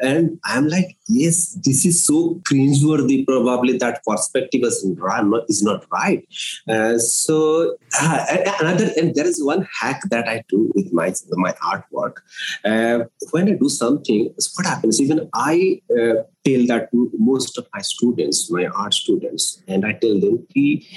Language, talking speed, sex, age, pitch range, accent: English, 155 wpm, male, 30-49, 125-200 Hz, Indian